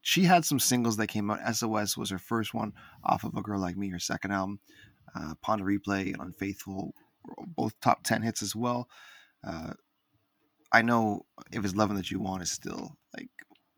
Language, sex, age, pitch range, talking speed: English, male, 20-39, 100-125 Hz, 185 wpm